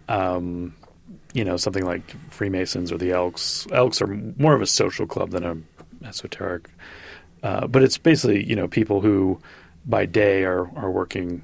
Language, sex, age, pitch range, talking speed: English, male, 30-49, 85-105 Hz, 170 wpm